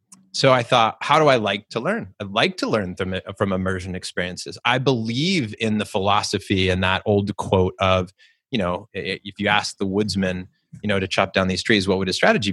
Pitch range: 95-115 Hz